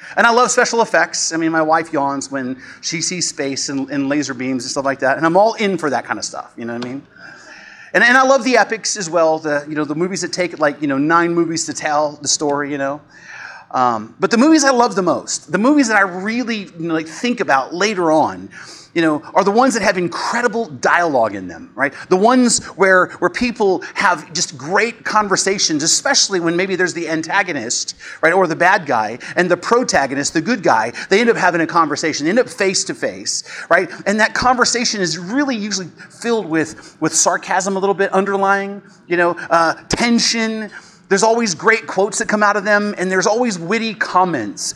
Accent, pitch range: American, 160-225 Hz